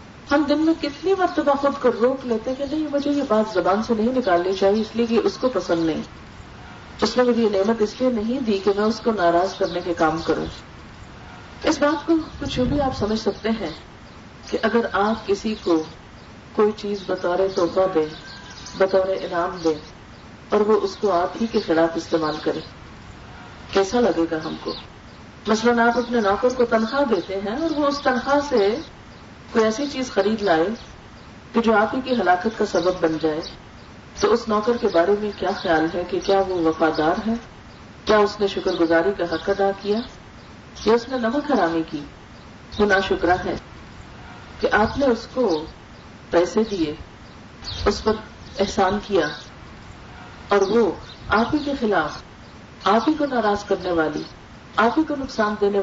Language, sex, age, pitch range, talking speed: Urdu, female, 40-59, 175-235 Hz, 185 wpm